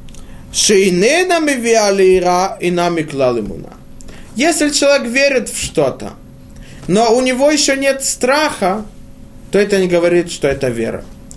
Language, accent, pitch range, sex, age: Russian, native, 180-260 Hz, male, 20-39